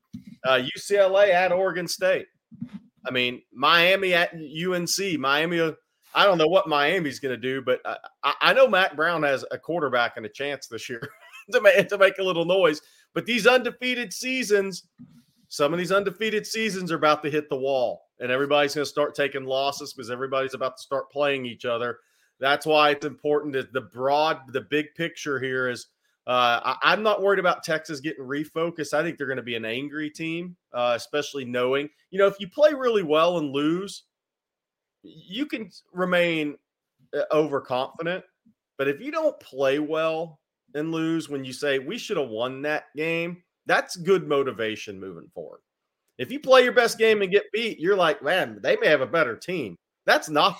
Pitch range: 140-195 Hz